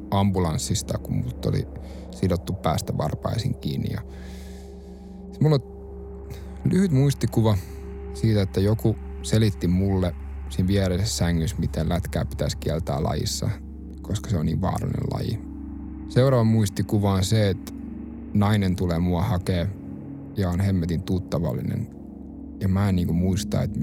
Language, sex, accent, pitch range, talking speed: Finnish, male, native, 85-125 Hz, 125 wpm